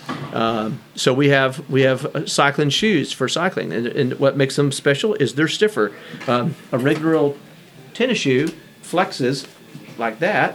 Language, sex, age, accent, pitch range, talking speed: English, male, 40-59, American, 125-155 Hz, 160 wpm